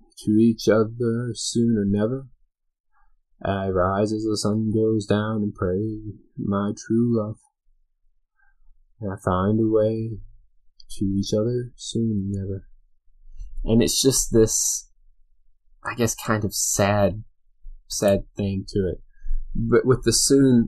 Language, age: English, 20-39